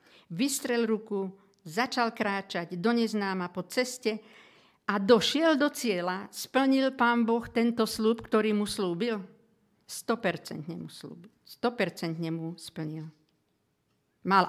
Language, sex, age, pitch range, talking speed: Slovak, female, 50-69, 170-230 Hz, 100 wpm